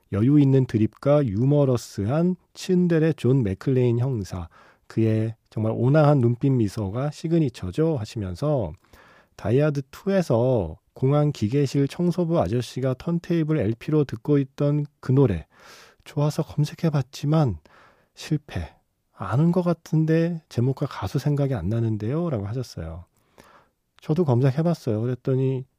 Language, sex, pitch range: Korean, male, 110-155 Hz